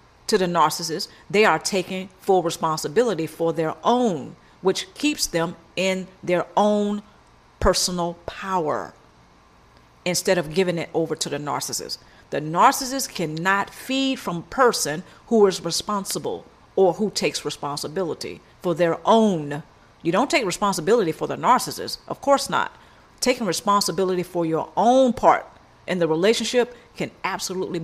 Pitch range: 165-210 Hz